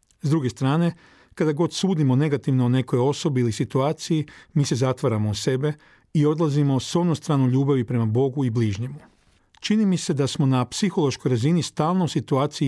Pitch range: 130-155 Hz